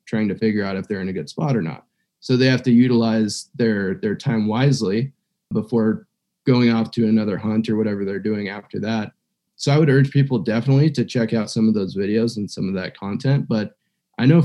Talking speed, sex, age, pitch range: 225 wpm, male, 20-39, 110-130 Hz